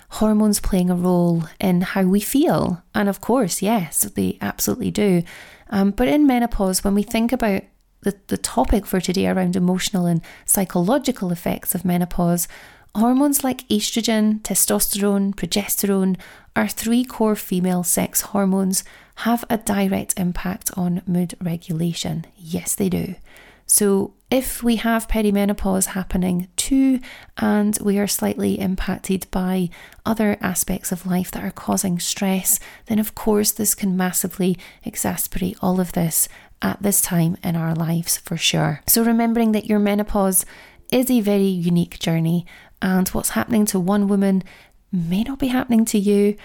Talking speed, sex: 150 wpm, female